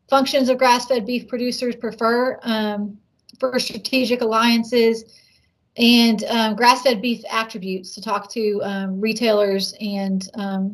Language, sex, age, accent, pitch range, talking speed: English, female, 30-49, American, 210-250 Hz, 125 wpm